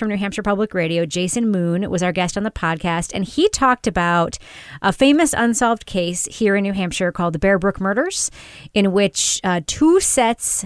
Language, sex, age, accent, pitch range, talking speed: English, female, 30-49, American, 175-230 Hz, 195 wpm